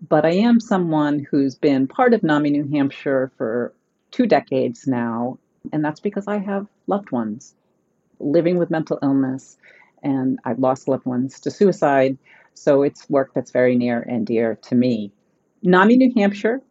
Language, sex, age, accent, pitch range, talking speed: English, female, 40-59, American, 130-155 Hz, 165 wpm